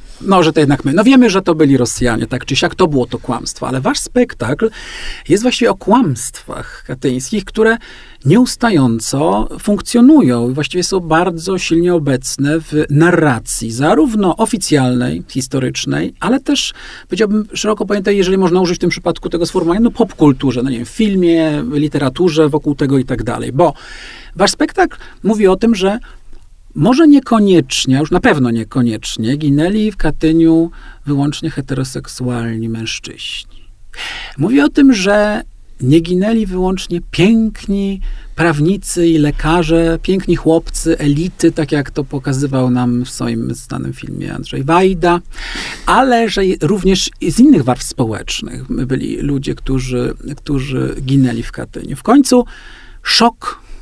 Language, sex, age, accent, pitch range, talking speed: Polish, male, 40-59, native, 135-195 Hz, 145 wpm